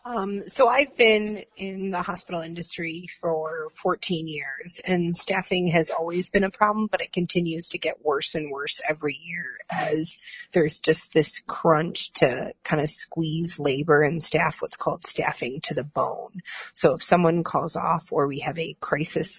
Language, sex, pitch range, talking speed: English, female, 145-180 Hz, 175 wpm